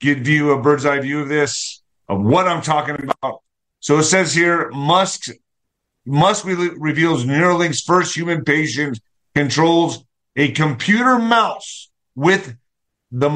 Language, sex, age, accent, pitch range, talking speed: English, male, 50-69, American, 140-180 Hz, 135 wpm